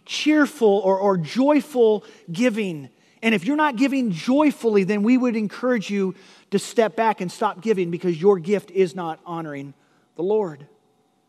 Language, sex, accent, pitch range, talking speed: English, male, American, 190-245 Hz, 160 wpm